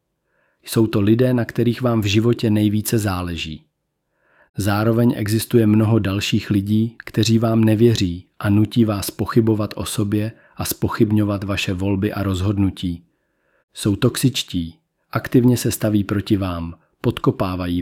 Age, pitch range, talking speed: 40-59, 100-115 Hz, 130 wpm